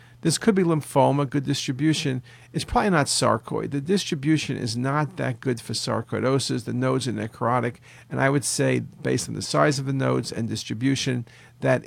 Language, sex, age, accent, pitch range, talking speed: English, male, 50-69, American, 120-150 Hz, 180 wpm